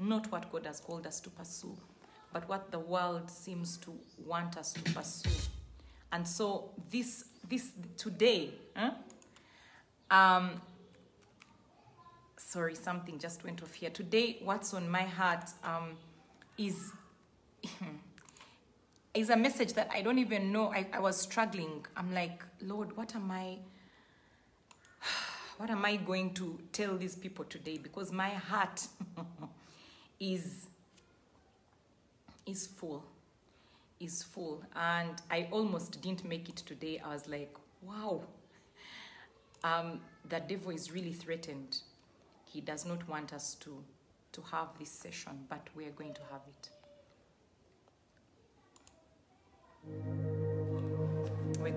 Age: 30-49